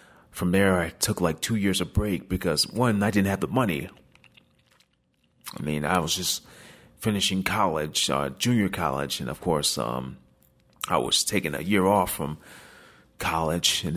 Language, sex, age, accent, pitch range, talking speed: English, male, 30-49, American, 80-100 Hz, 170 wpm